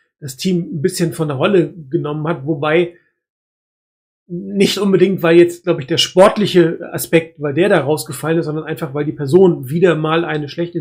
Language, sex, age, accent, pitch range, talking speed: German, male, 40-59, German, 150-170 Hz, 185 wpm